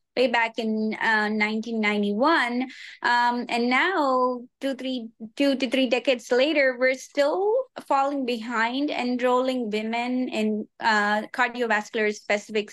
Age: 20-39